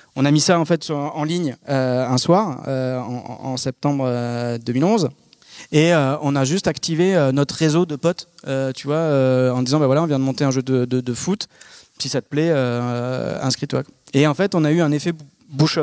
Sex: male